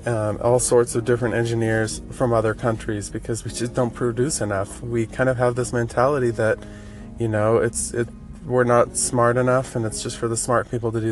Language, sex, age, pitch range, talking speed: English, male, 20-39, 95-120 Hz, 210 wpm